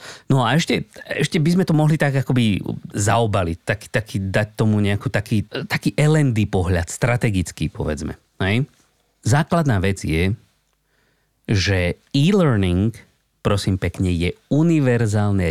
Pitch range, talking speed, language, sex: 95-130 Hz, 125 wpm, Slovak, male